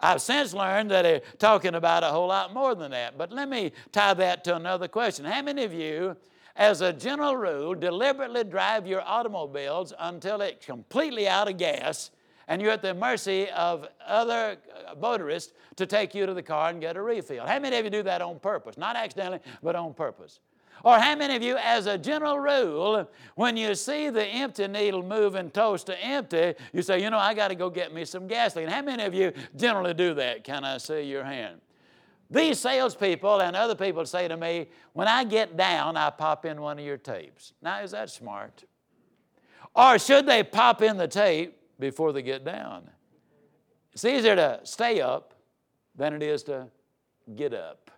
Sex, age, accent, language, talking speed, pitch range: male, 60-79, American, English, 200 wpm, 170-235 Hz